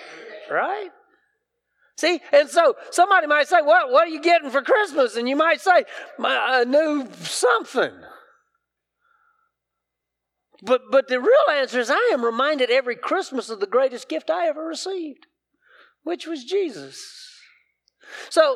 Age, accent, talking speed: 40-59, American, 140 wpm